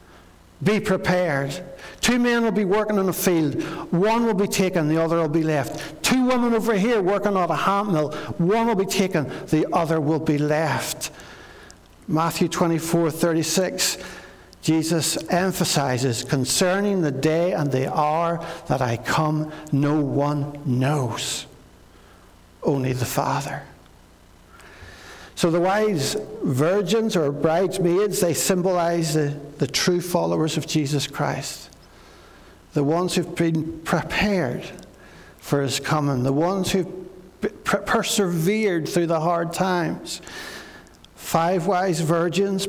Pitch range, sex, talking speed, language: 145-185 Hz, male, 130 wpm, English